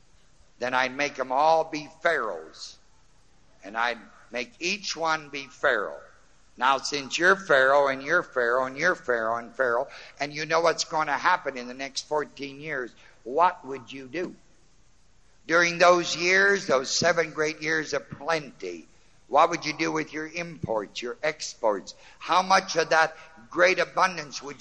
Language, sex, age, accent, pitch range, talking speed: English, male, 60-79, American, 130-180 Hz, 165 wpm